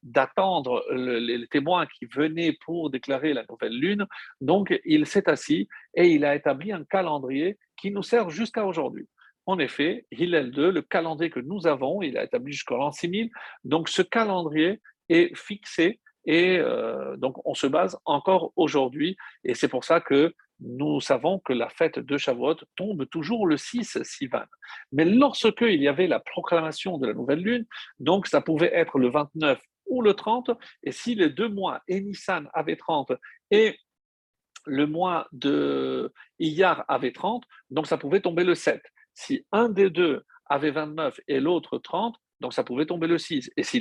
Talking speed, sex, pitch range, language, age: 175 wpm, male, 150-210 Hz, French, 50-69